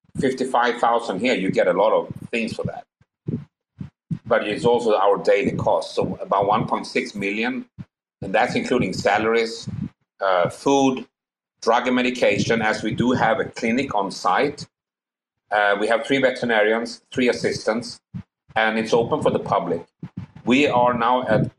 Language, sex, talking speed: English, male, 160 wpm